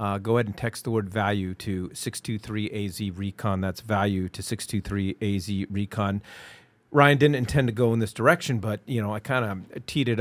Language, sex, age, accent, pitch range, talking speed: English, male, 40-59, American, 100-125 Hz, 225 wpm